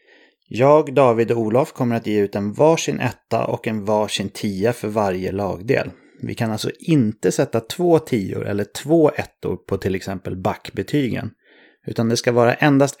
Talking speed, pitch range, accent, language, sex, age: 170 wpm, 100-130 Hz, Swedish, English, male, 30-49